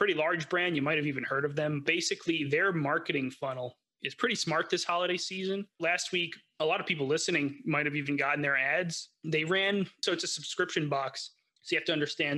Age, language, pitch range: 30-49, English, 150-185 Hz